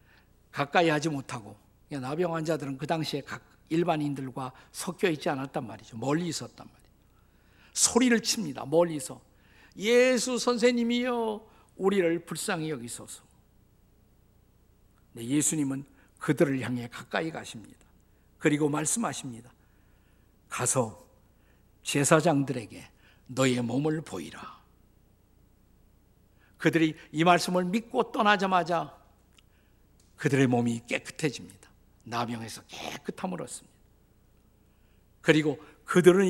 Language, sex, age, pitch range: Korean, male, 50-69, 115-180 Hz